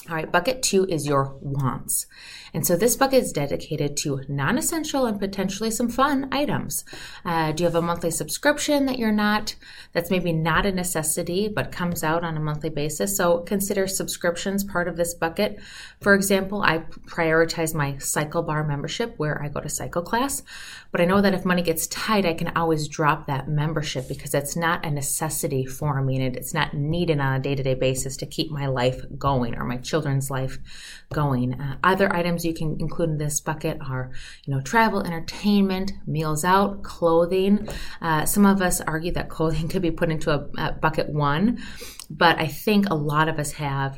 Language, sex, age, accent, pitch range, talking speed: English, female, 20-39, American, 145-190 Hz, 195 wpm